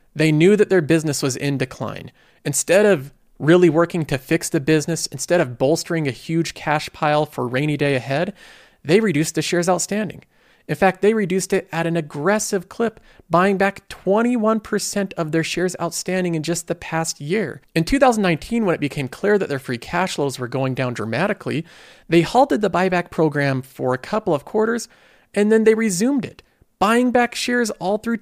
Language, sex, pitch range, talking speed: English, male, 145-205 Hz, 185 wpm